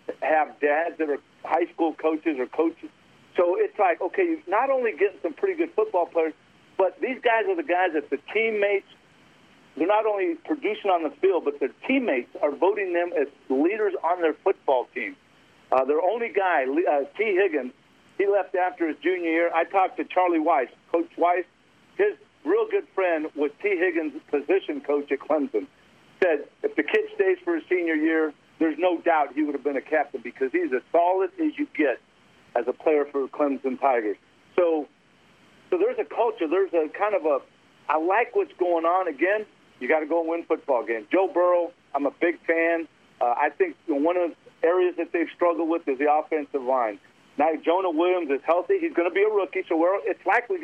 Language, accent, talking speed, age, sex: English, American, 205 wpm, 50-69, male